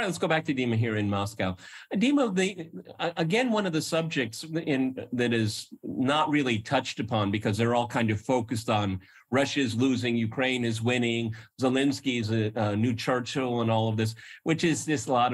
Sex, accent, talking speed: male, American, 195 wpm